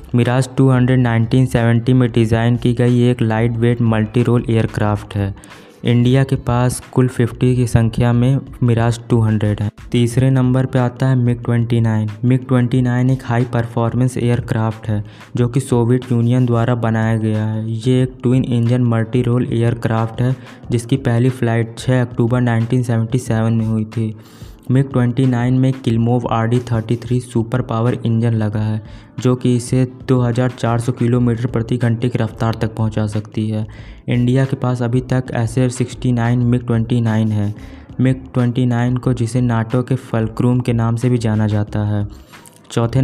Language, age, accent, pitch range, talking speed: Hindi, 20-39, native, 115-125 Hz, 155 wpm